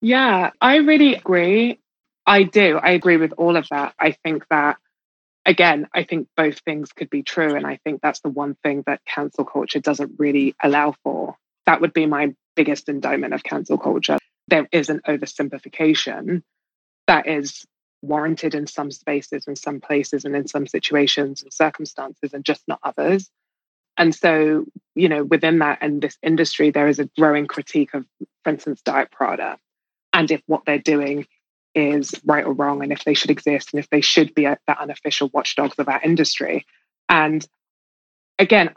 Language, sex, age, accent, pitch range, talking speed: English, female, 20-39, British, 145-165 Hz, 180 wpm